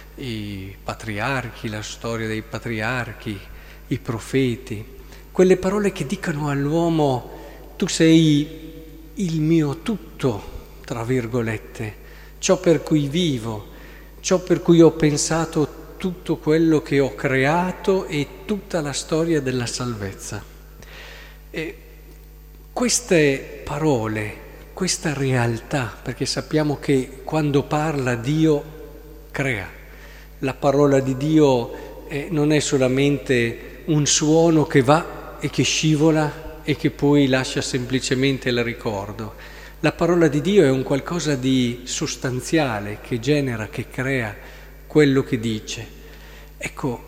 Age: 50-69